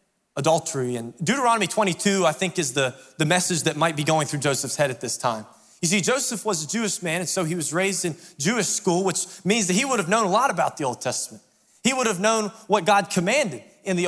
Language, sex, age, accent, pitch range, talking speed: English, male, 20-39, American, 165-215 Hz, 245 wpm